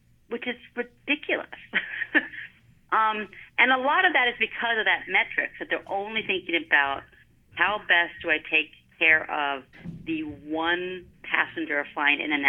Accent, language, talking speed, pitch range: American, English, 155 wpm, 155-220 Hz